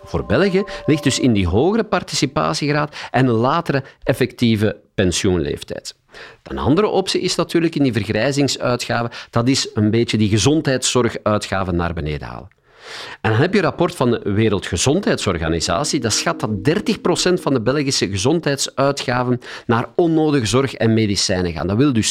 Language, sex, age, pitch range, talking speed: Dutch, male, 50-69, 105-145 Hz, 150 wpm